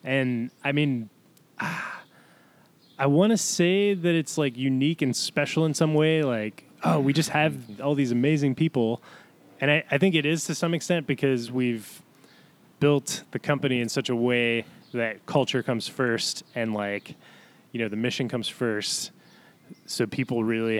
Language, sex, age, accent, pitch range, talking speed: English, male, 20-39, American, 115-150 Hz, 170 wpm